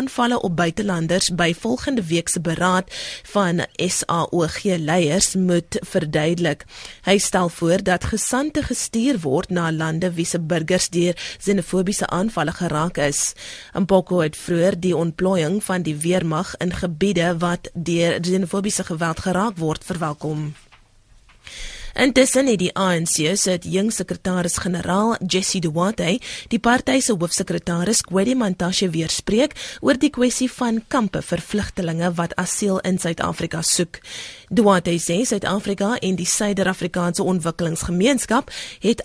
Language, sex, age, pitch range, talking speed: English, female, 20-39, 170-215 Hz, 125 wpm